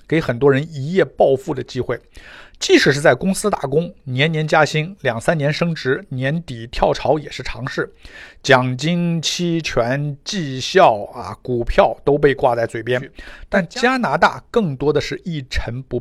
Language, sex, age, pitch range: Chinese, male, 50-69, 125-165 Hz